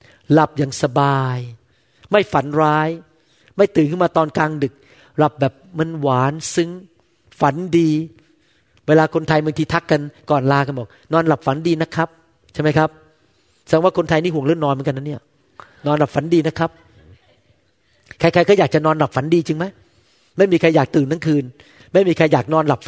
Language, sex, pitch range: Thai, male, 135-175 Hz